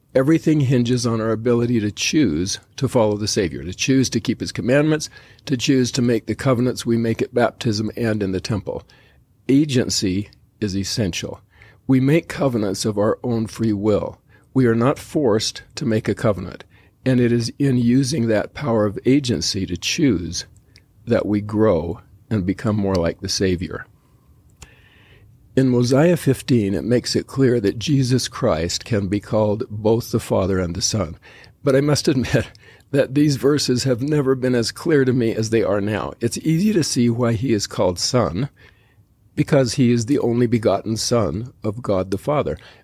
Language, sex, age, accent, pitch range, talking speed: English, male, 50-69, American, 105-130 Hz, 180 wpm